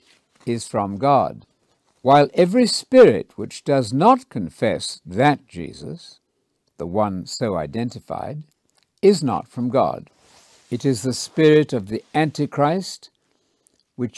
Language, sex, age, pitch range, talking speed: English, male, 60-79, 115-155 Hz, 120 wpm